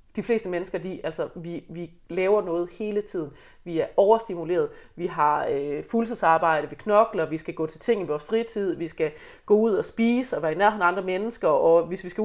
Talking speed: 220 wpm